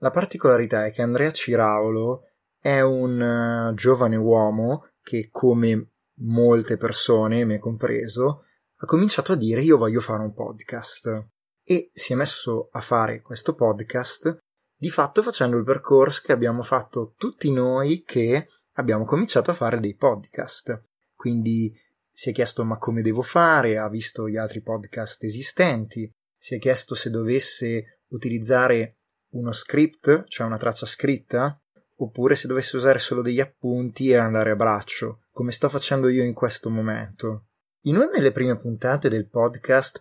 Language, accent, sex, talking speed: Italian, native, male, 150 wpm